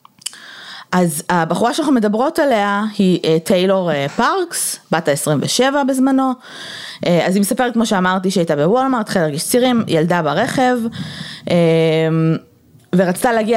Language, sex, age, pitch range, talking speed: Hebrew, female, 20-39, 170-240 Hz, 110 wpm